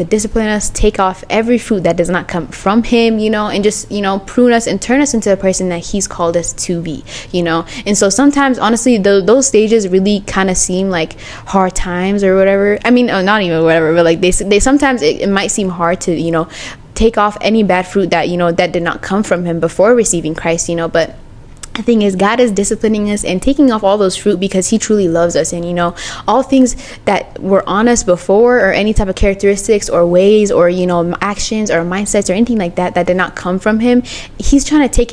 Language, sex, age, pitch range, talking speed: English, female, 10-29, 180-225 Hz, 245 wpm